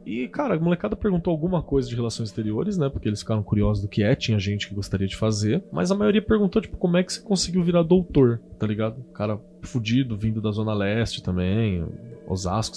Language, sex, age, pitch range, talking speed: Portuguese, male, 20-39, 110-165 Hz, 215 wpm